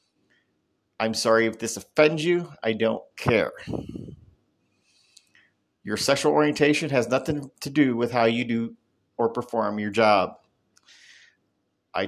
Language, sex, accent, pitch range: English, male, American, 110-140 Hz